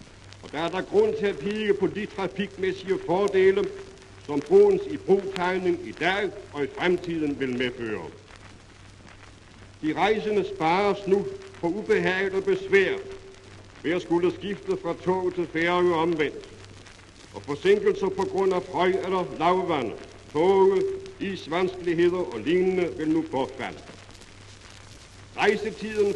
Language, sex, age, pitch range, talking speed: Danish, male, 60-79, 140-215 Hz, 125 wpm